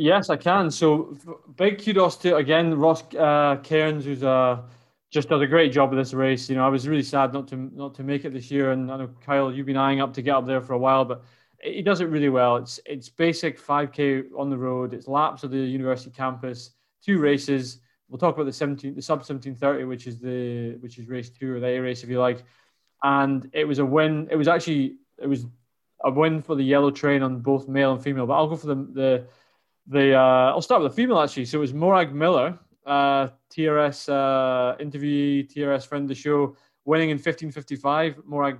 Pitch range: 130-150 Hz